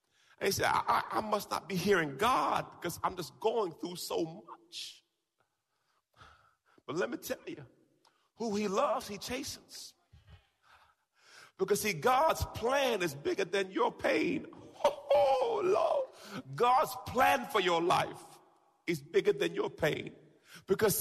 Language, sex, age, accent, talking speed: English, male, 40-59, American, 145 wpm